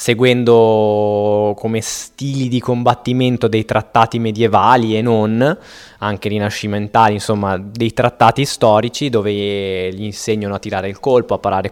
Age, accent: 20-39, native